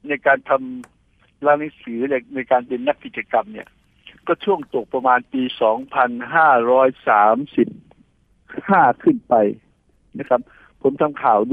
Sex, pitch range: male, 125-155 Hz